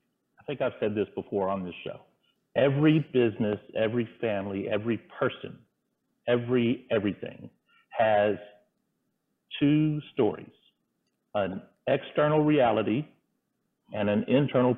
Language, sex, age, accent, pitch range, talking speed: English, male, 50-69, American, 105-125 Hz, 105 wpm